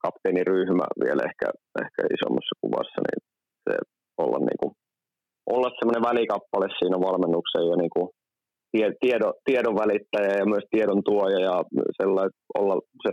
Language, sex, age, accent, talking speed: Finnish, male, 30-49, native, 130 wpm